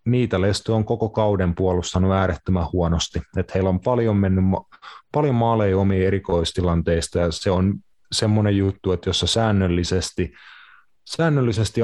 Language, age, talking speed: Finnish, 30-49, 140 wpm